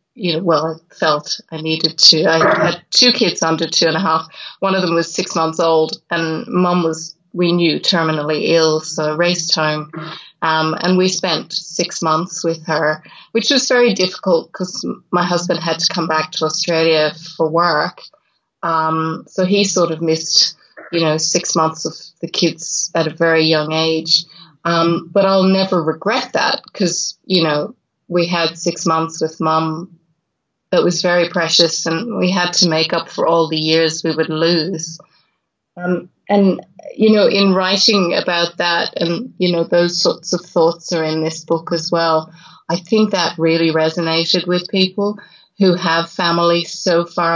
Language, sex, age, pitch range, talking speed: English, female, 20-39, 160-185 Hz, 175 wpm